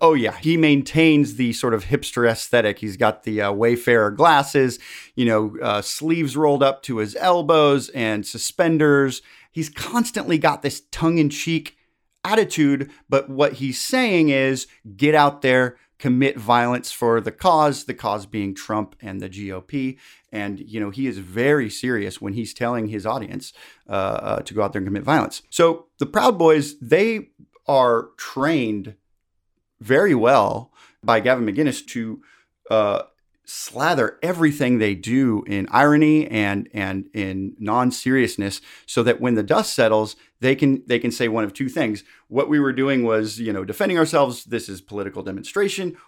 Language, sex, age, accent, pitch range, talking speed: English, male, 30-49, American, 110-150 Hz, 165 wpm